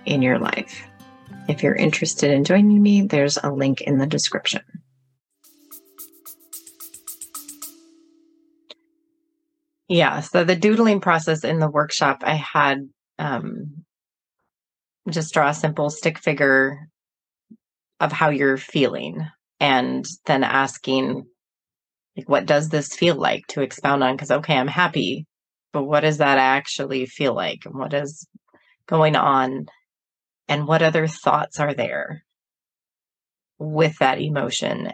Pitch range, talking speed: 140-190 Hz, 125 wpm